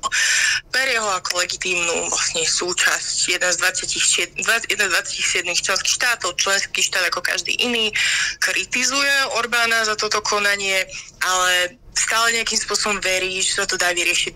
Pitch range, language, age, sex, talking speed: 185-215 Hz, Slovak, 20-39, female, 140 wpm